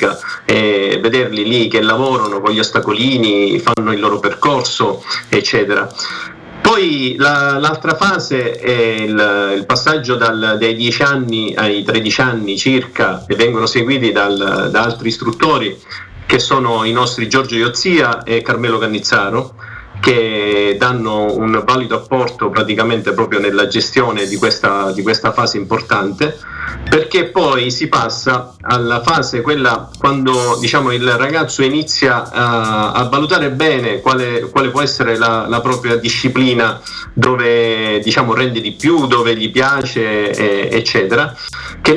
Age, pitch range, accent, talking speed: 50-69, 110-130 Hz, native, 125 wpm